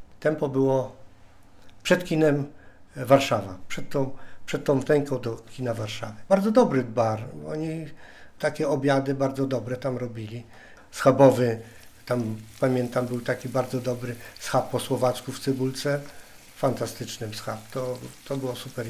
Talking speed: 130 wpm